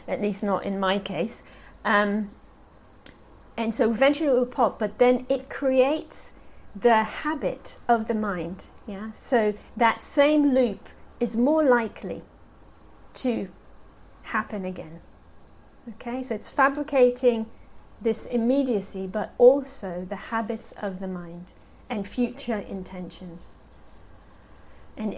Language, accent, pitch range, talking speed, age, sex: English, British, 185-230 Hz, 120 wpm, 40-59, female